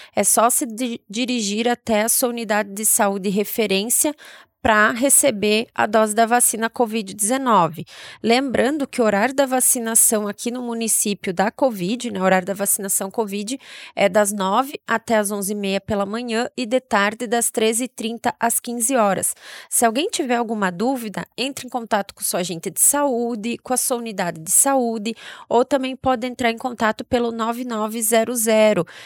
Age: 20-39